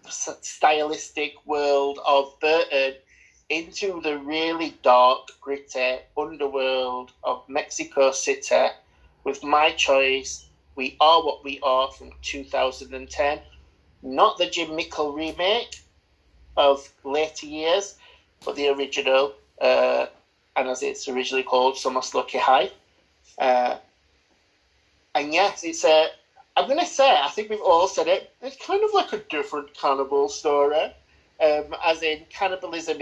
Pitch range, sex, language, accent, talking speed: 130-150 Hz, male, English, British, 130 wpm